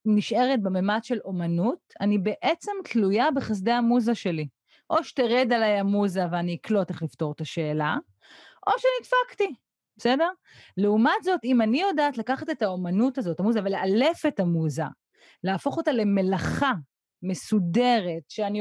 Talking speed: 130 wpm